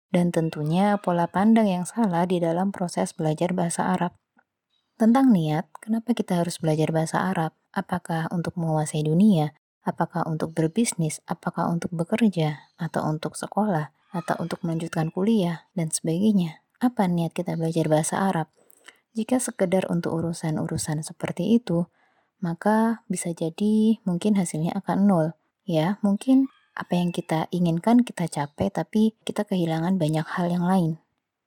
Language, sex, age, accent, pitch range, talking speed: Indonesian, female, 20-39, native, 165-205 Hz, 140 wpm